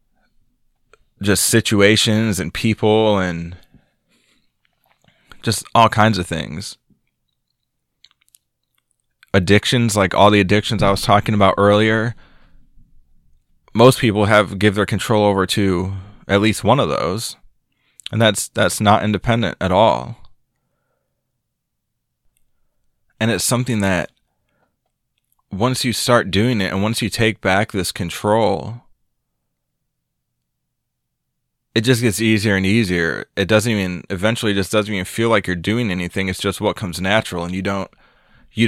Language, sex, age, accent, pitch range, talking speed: English, male, 20-39, American, 95-110 Hz, 130 wpm